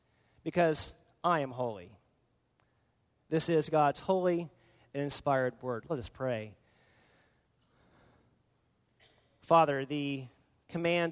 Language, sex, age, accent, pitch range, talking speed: English, male, 30-49, American, 130-165 Hz, 90 wpm